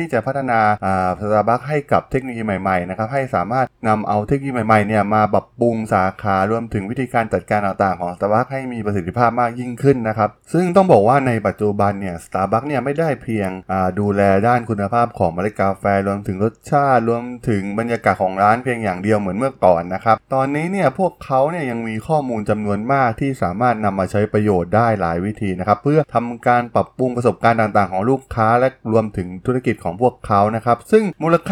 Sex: male